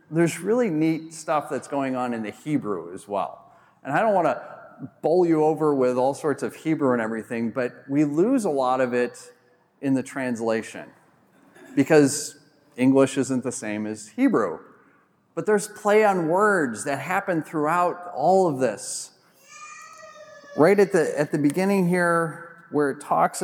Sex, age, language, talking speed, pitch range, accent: male, 40-59, English, 165 wpm, 130-180 Hz, American